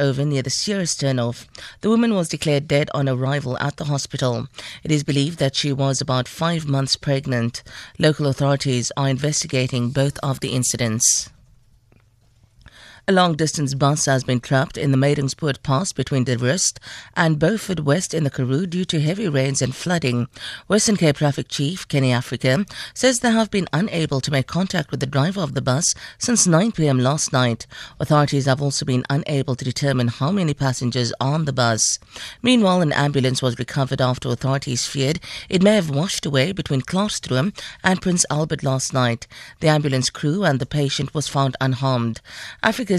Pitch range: 130-165 Hz